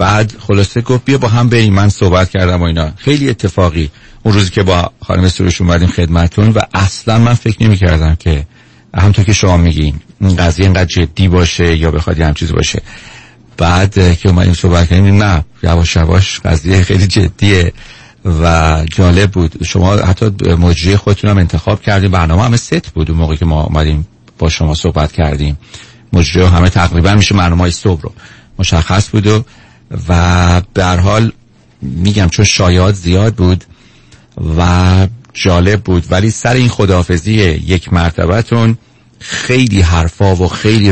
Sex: male